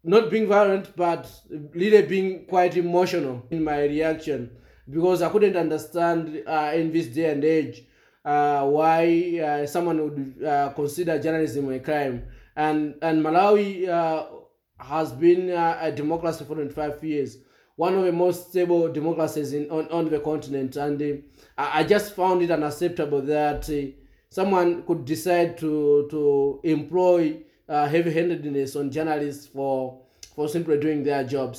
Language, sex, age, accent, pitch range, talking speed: English, male, 20-39, South African, 145-170 Hz, 150 wpm